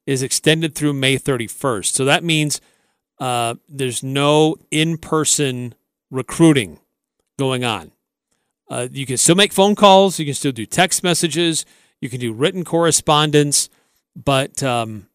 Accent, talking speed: American, 140 wpm